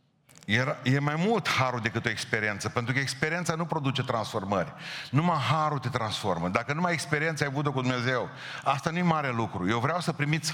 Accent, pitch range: native, 130-180 Hz